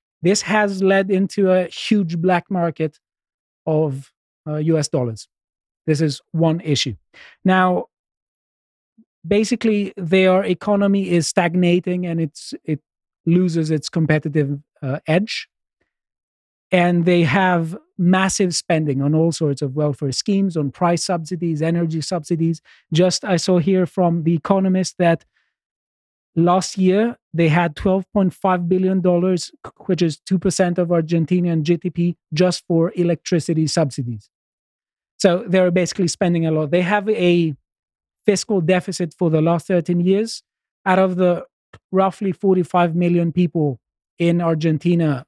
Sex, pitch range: male, 160-185 Hz